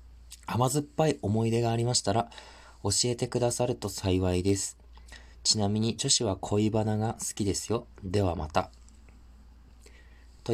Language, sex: Japanese, male